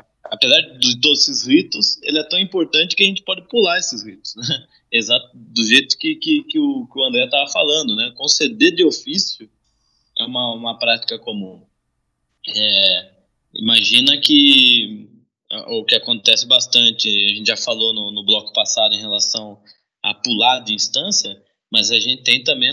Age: 20-39